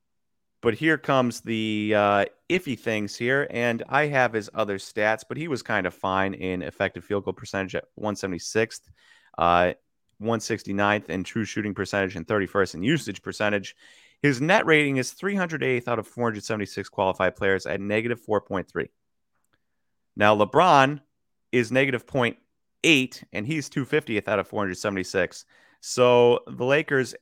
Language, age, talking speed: English, 30-49, 150 wpm